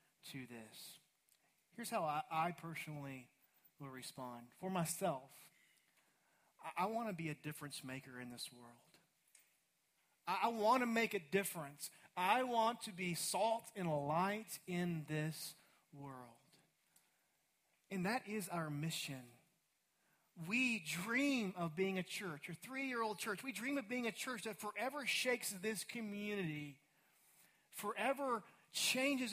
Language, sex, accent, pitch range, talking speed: English, male, American, 150-210 Hz, 135 wpm